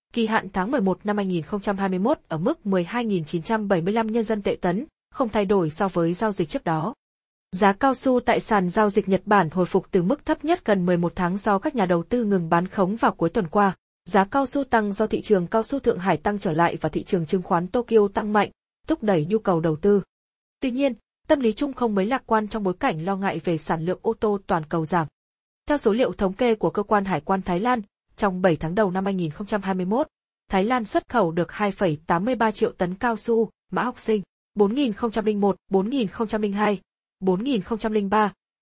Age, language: 20-39, Vietnamese